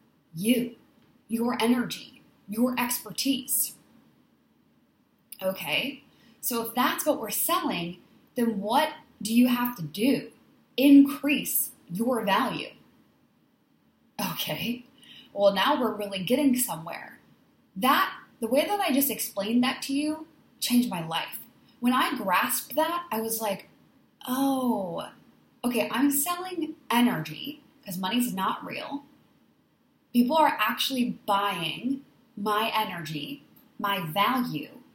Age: 10-29